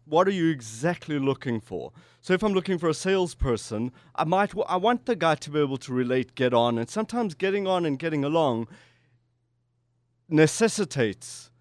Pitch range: 120-160 Hz